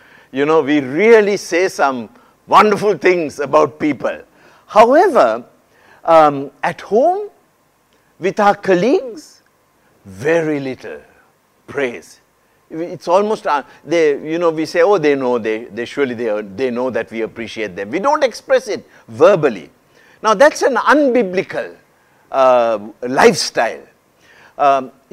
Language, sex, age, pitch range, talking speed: English, male, 60-79, 140-210 Hz, 130 wpm